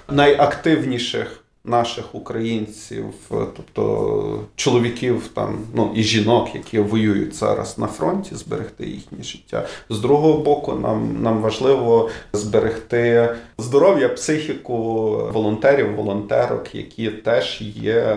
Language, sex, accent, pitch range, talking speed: Ukrainian, male, native, 105-120 Hz, 100 wpm